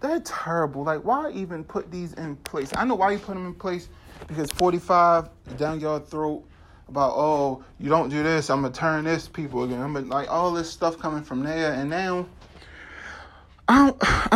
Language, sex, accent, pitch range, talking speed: English, male, American, 150-195 Hz, 190 wpm